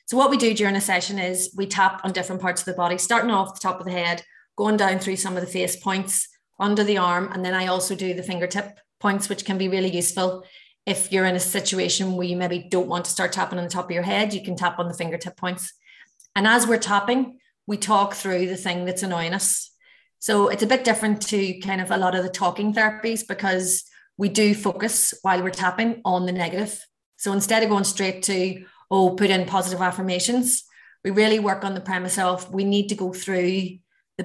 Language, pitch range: English, 185-210 Hz